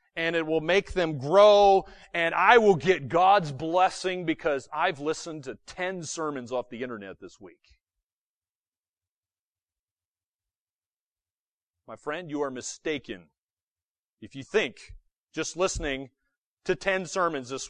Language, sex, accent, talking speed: English, male, American, 125 wpm